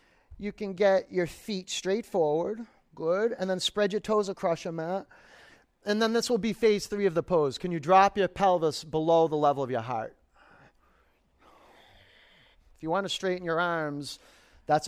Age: 30-49